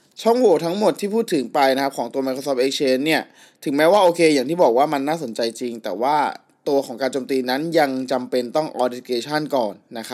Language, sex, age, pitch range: Thai, male, 20-39, 130-160 Hz